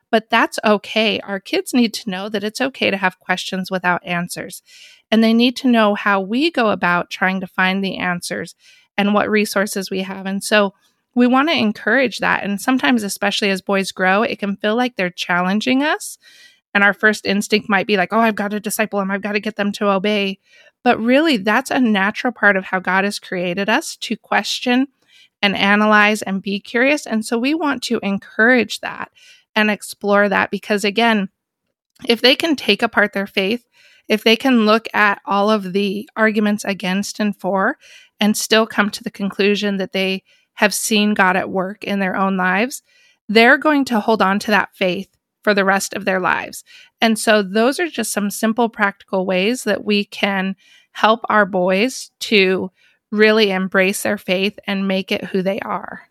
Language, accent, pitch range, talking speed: English, American, 195-235 Hz, 195 wpm